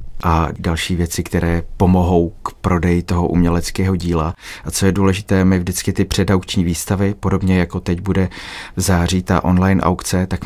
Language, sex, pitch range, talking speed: Czech, male, 85-95 Hz, 165 wpm